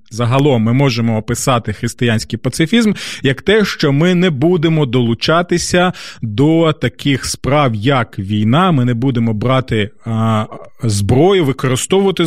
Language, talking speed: Ukrainian, 115 wpm